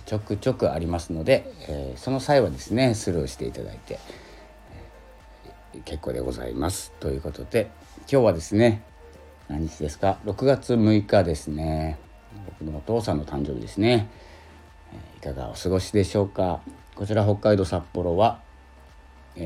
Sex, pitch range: male, 75-105 Hz